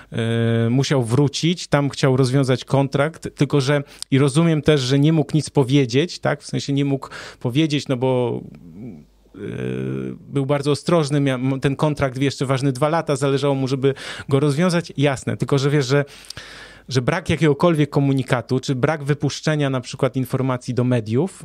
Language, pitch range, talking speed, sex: Polish, 125-150 Hz, 160 wpm, male